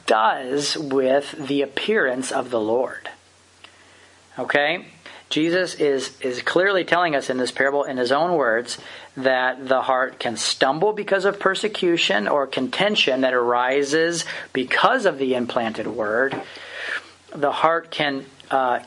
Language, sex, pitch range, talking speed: English, male, 130-160 Hz, 135 wpm